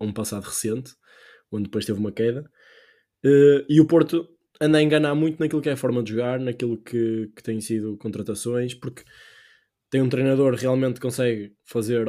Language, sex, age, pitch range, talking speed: Portuguese, male, 20-39, 115-135 Hz, 185 wpm